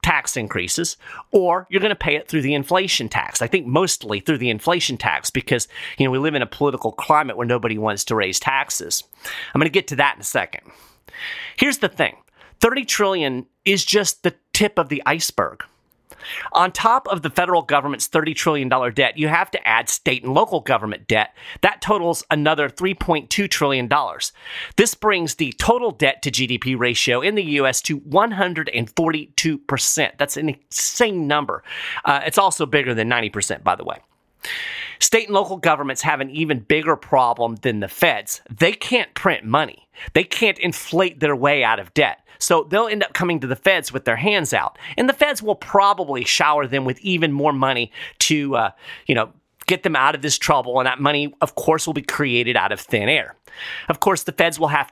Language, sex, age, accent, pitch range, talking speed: English, male, 40-59, American, 135-185 Hz, 195 wpm